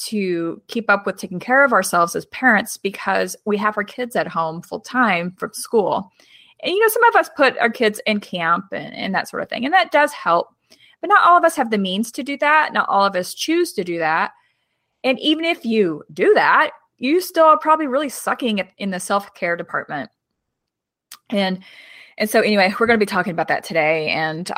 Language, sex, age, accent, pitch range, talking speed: English, female, 30-49, American, 185-270 Hz, 220 wpm